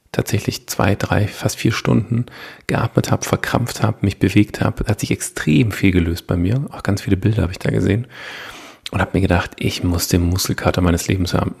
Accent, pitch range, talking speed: German, 95-120 Hz, 200 wpm